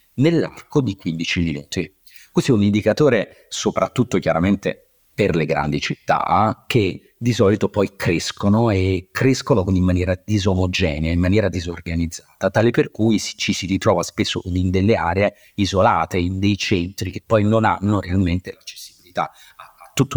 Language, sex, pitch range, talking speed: Italian, male, 90-110 Hz, 145 wpm